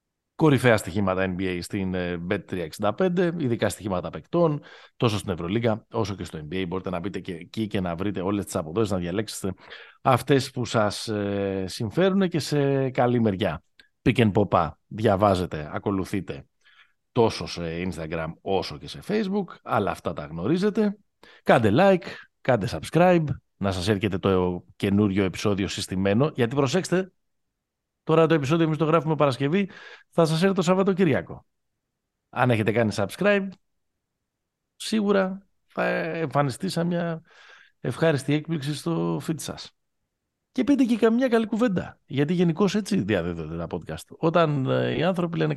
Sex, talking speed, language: male, 140 wpm, Greek